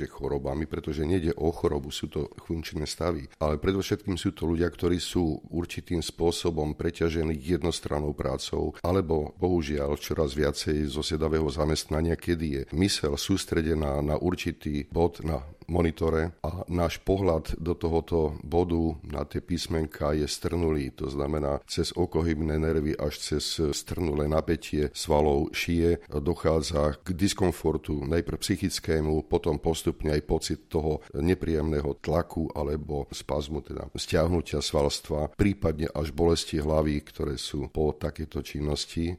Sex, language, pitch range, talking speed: male, Slovak, 75-85 Hz, 130 wpm